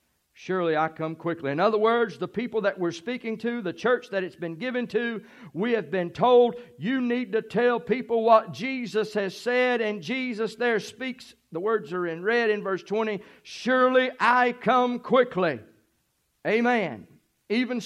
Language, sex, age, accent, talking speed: English, male, 50-69, American, 170 wpm